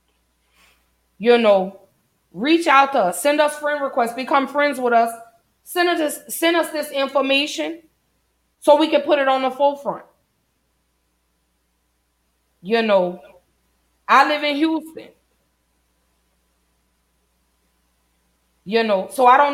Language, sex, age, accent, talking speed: English, female, 30-49, American, 120 wpm